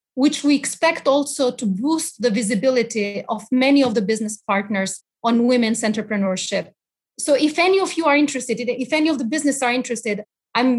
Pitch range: 235-280 Hz